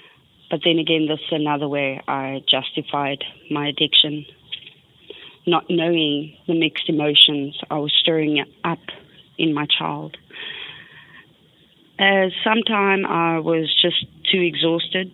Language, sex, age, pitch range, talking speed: English, female, 20-39, 150-175 Hz, 120 wpm